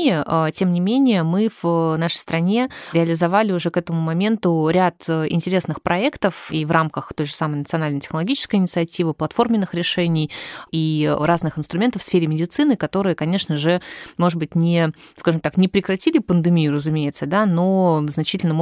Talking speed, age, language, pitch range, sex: 150 wpm, 20-39, Russian, 150-175 Hz, female